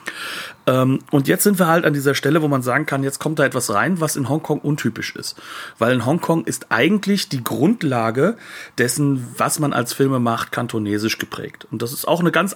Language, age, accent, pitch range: German, 40-59, German, 120-155 Hz